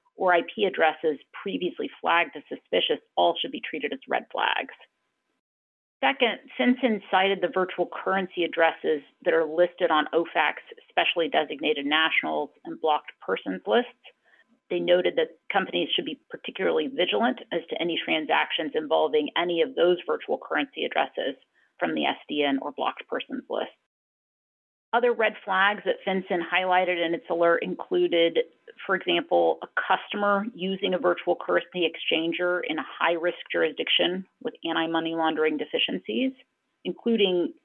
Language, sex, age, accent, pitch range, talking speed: English, female, 40-59, American, 165-225 Hz, 140 wpm